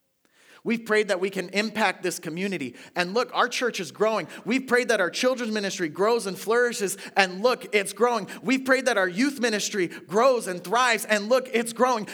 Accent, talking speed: American, 200 wpm